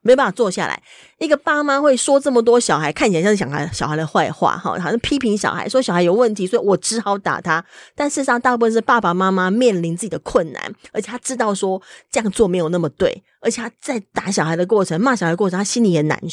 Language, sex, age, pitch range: Chinese, female, 20-39, 175-240 Hz